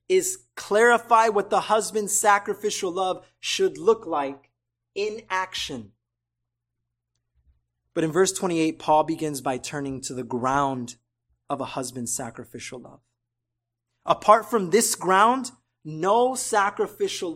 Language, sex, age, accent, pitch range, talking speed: English, male, 20-39, American, 120-195 Hz, 120 wpm